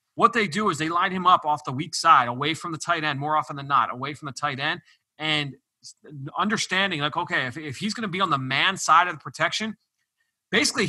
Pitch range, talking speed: 145-175 Hz, 245 wpm